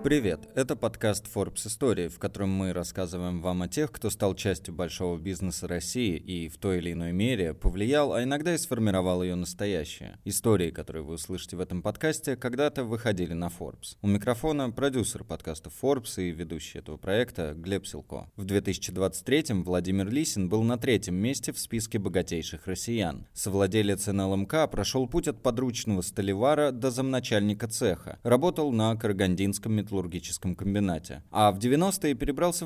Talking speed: 155 wpm